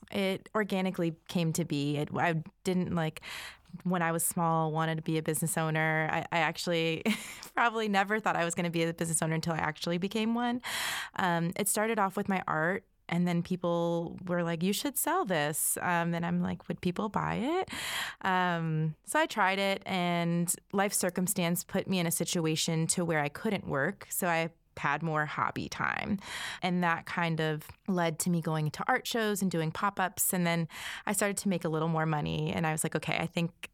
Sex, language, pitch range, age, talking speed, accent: female, English, 160-190 Hz, 20-39, 205 wpm, American